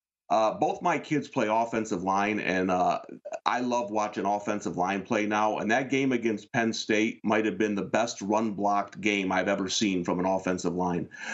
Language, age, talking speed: English, 40-59, 190 wpm